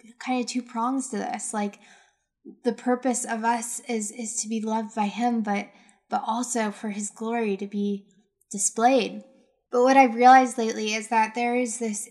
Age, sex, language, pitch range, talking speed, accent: 10-29, female, English, 205-240 Hz, 185 wpm, American